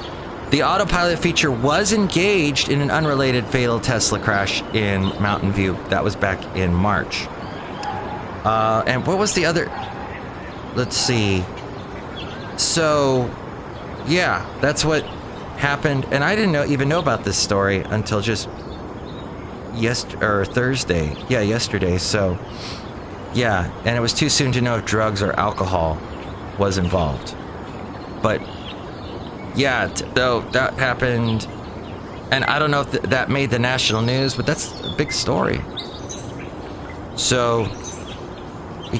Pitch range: 95-135 Hz